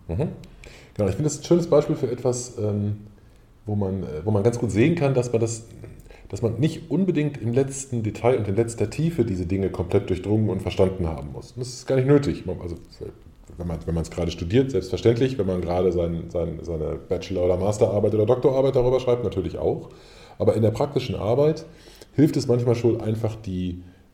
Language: German